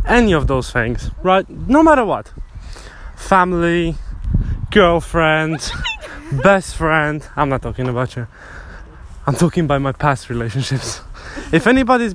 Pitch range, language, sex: 105-175 Hz, English, male